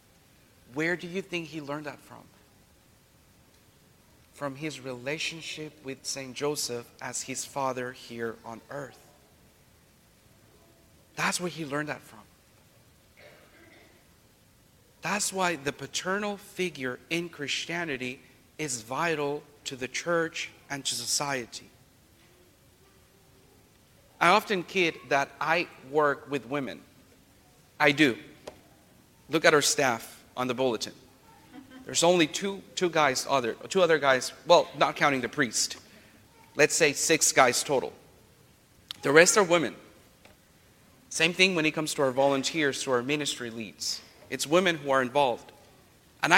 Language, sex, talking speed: English, male, 130 wpm